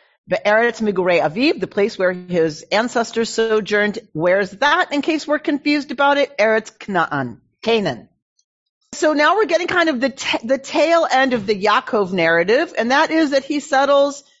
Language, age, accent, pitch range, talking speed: English, 40-59, American, 205-285 Hz, 175 wpm